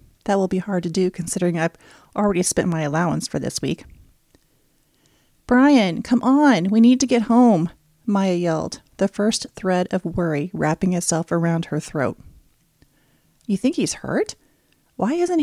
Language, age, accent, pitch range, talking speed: English, 40-59, American, 175-240 Hz, 160 wpm